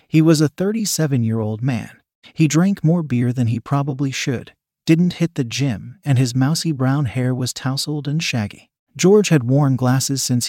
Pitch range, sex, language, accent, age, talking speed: 125-160 Hz, male, English, American, 40-59, 175 wpm